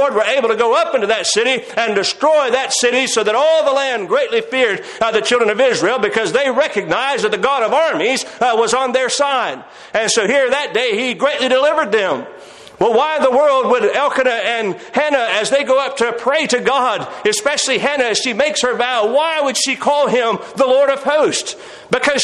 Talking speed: 215 wpm